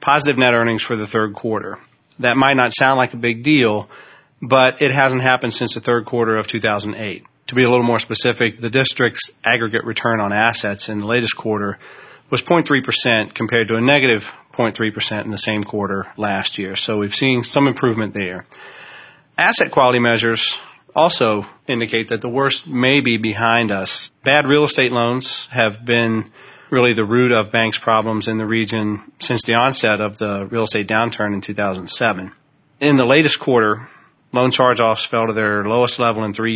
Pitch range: 110-125 Hz